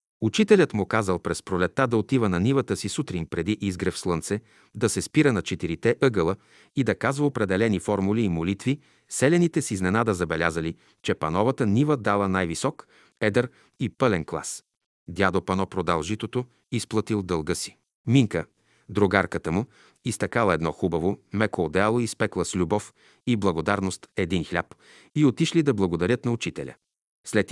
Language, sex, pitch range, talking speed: Bulgarian, male, 95-115 Hz, 155 wpm